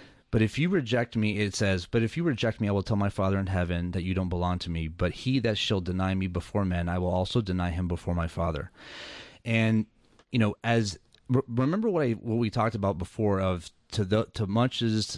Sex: male